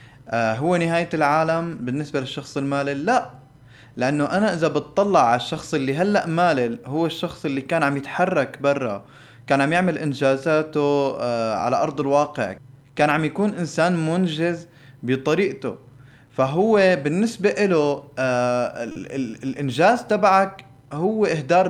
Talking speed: 120 wpm